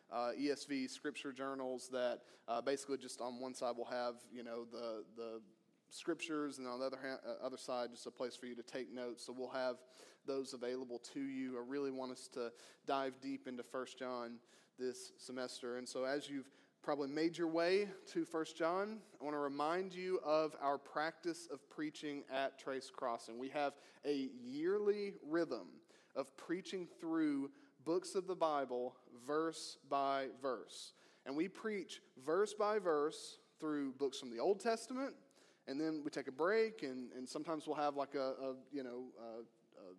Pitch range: 130-165 Hz